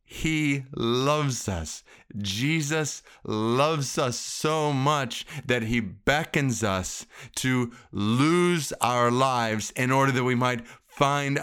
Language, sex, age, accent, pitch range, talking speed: English, male, 30-49, American, 120-180 Hz, 115 wpm